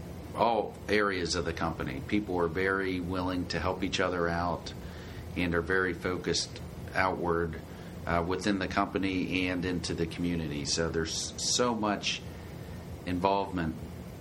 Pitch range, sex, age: 80-95 Hz, male, 40-59